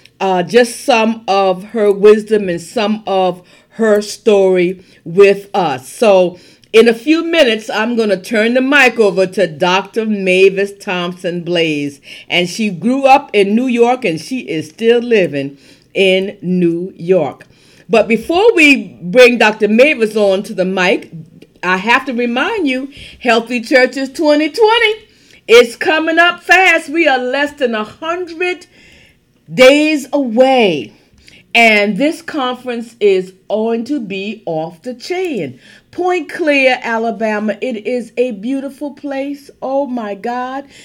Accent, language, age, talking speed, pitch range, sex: American, English, 50-69, 140 wpm, 190-270 Hz, female